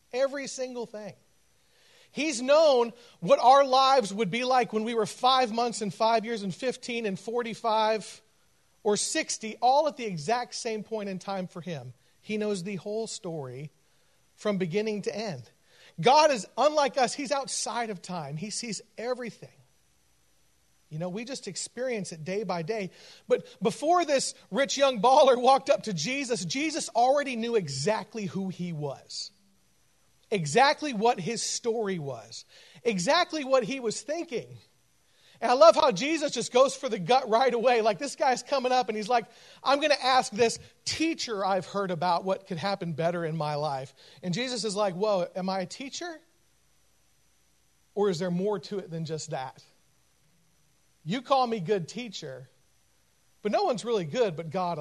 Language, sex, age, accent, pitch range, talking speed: English, male, 40-59, American, 175-255 Hz, 170 wpm